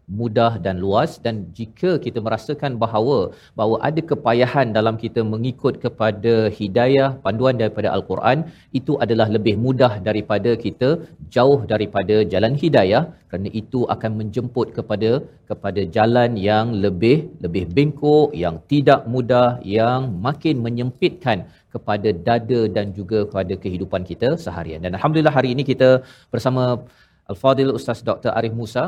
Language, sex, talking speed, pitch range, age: Malayalam, male, 135 wpm, 110-135 Hz, 40-59